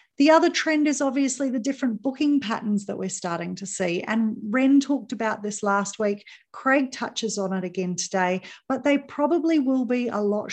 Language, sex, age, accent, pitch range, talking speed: English, female, 40-59, Australian, 195-260 Hz, 195 wpm